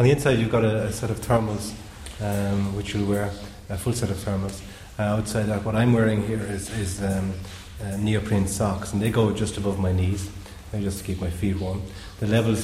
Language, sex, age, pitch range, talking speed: English, male, 30-49, 95-105 Hz, 235 wpm